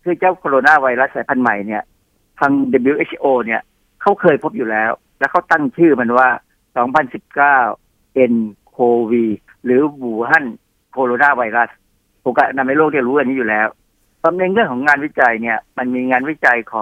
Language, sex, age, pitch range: Thai, male, 60-79, 110-140 Hz